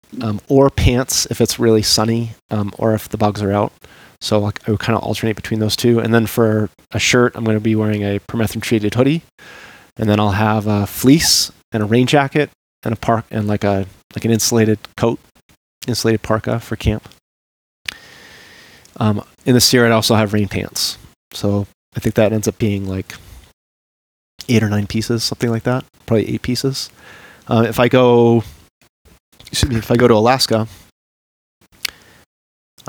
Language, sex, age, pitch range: English, male, 30-49, 105-115 Hz